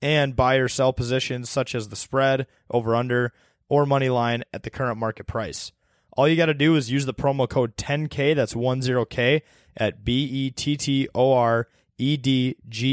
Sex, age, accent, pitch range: male, 20-39, American, 105-130 Hz